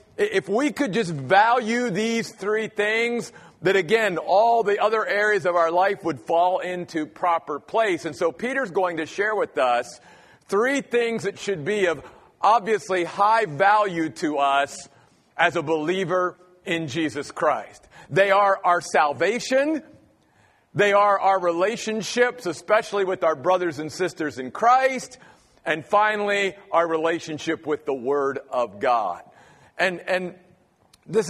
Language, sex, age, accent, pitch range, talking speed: English, male, 50-69, American, 170-225 Hz, 145 wpm